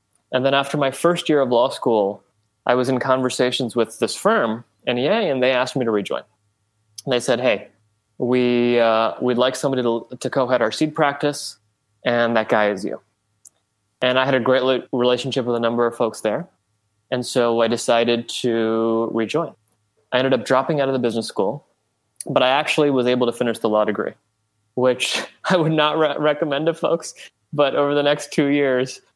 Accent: American